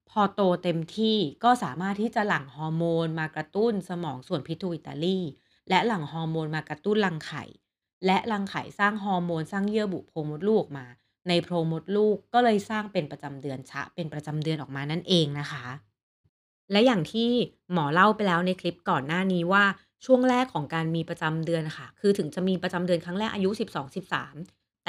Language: Thai